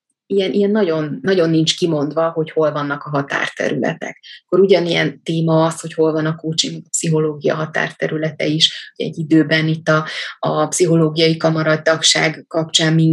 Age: 20-39